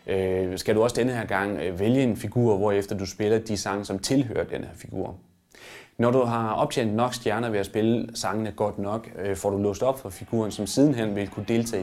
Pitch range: 100-115 Hz